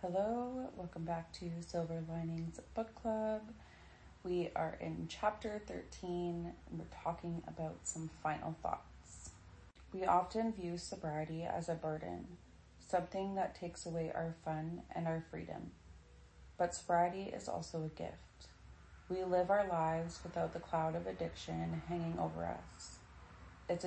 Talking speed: 140 wpm